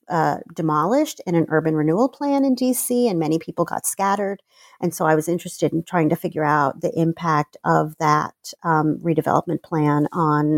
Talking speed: 180 wpm